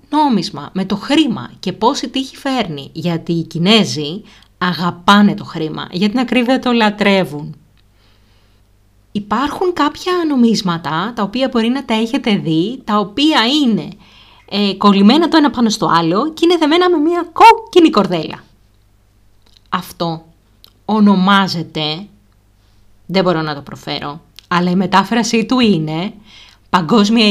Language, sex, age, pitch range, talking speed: Greek, female, 30-49, 150-235 Hz, 130 wpm